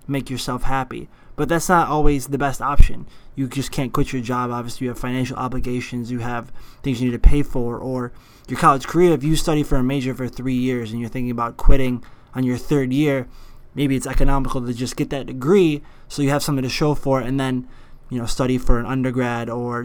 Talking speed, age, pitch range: 225 wpm, 20-39, 125-145 Hz